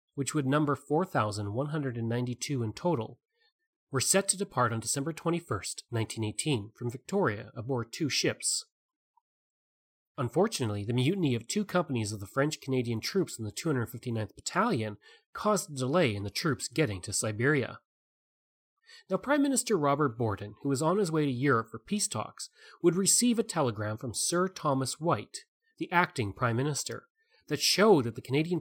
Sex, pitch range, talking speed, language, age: male, 120-180 Hz, 155 wpm, English, 30-49